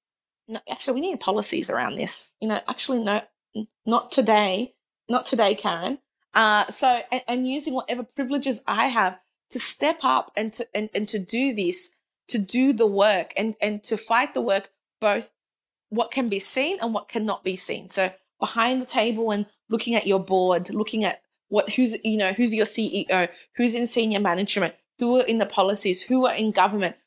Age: 20-39